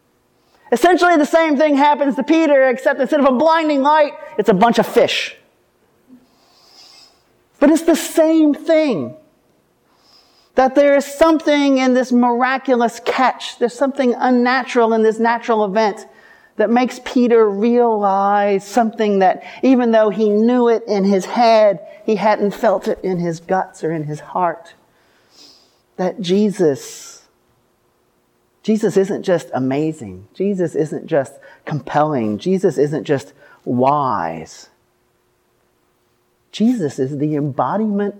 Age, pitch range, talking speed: 40-59, 195-280 Hz, 125 wpm